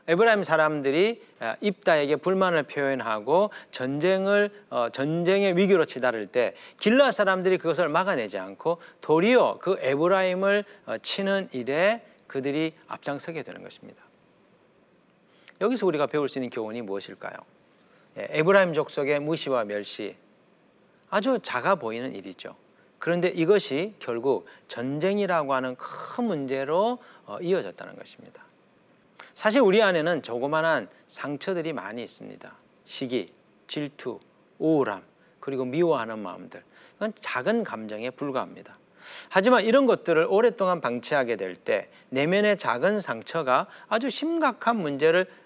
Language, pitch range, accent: Korean, 135-200 Hz, native